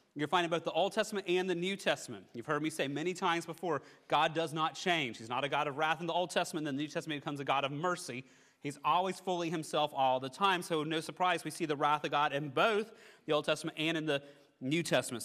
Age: 30-49